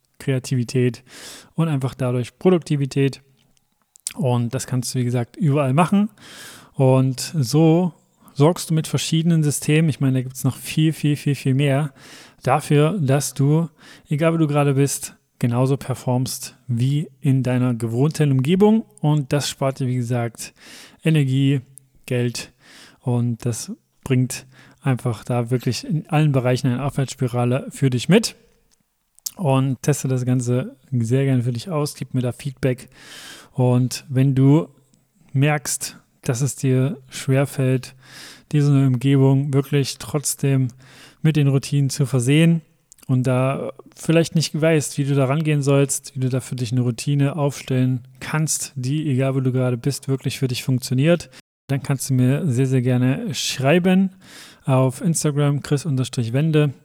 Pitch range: 130-150 Hz